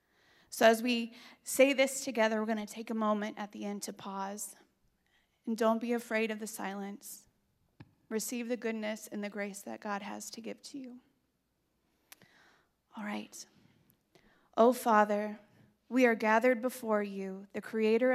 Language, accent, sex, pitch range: English, American, female, 205-230 Hz